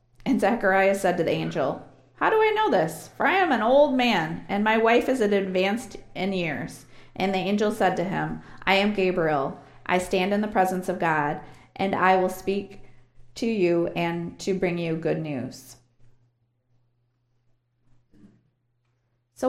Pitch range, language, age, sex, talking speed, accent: 130-215 Hz, English, 30-49, female, 165 wpm, American